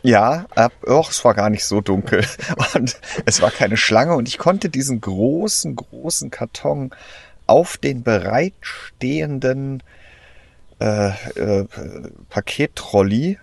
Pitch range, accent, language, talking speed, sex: 100-120 Hz, German, German, 120 wpm, male